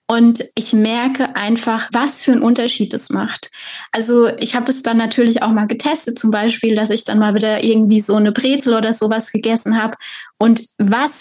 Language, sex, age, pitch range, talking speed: German, female, 20-39, 220-250 Hz, 195 wpm